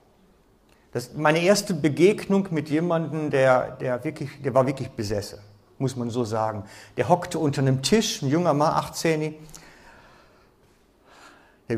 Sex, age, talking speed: male, 50-69, 140 wpm